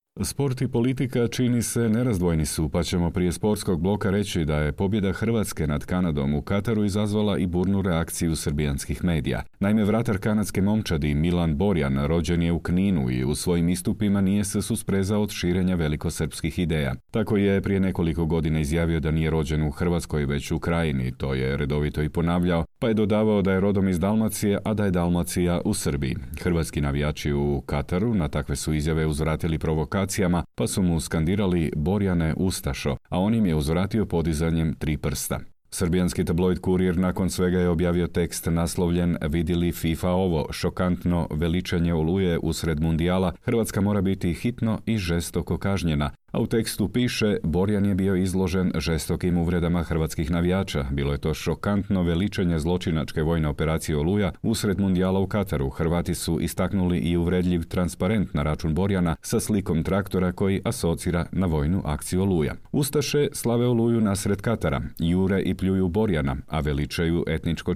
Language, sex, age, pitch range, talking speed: Croatian, male, 40-59, 80-100 Hz, 165 wpm